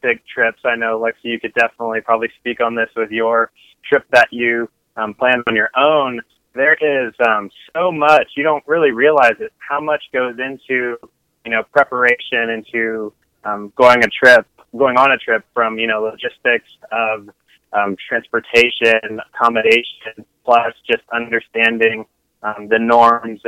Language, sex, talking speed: English, male, 160 wpm